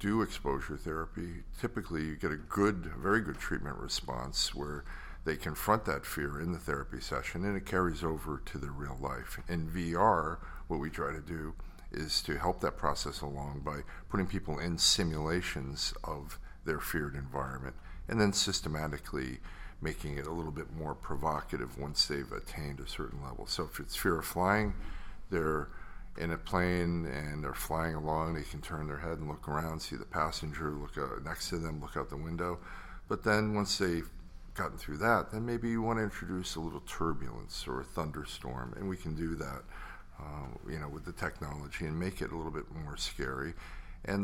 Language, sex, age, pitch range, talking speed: English, male, 50-69, 75-90 Hz, 190 wpm